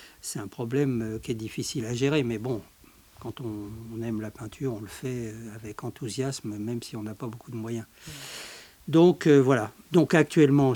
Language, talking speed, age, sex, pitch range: French, 185 wpm, 60-79, male, 115-145 Hz